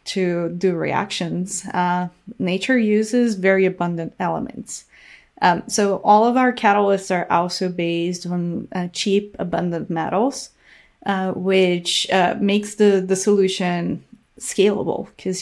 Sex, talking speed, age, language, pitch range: female, 125 wpm, 30-49, English, 175-205 Hz